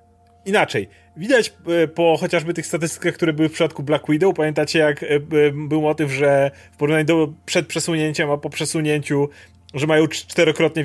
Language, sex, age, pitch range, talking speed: Polish, male, 30-49, 145-175 Hz, 155 wpm